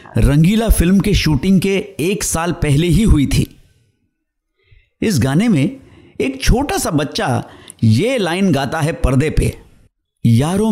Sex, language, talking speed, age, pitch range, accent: male, Hindi, 140 wpm, 60-79, 115-185 Hz, native